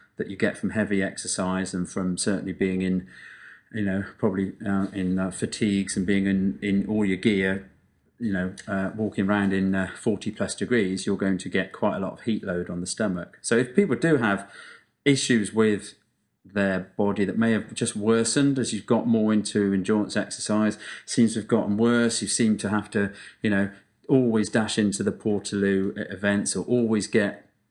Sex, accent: male, British